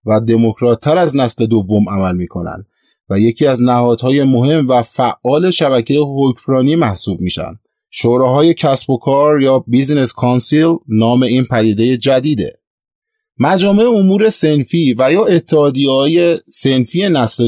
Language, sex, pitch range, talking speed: Persian, male, 125-165 Hz, 125 wpm